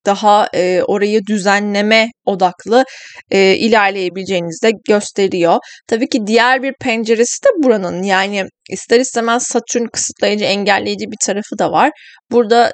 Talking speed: 120 wpm